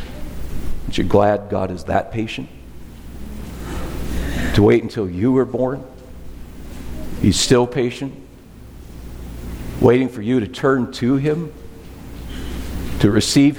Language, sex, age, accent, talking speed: English, male, 50-69, American, 105 wpm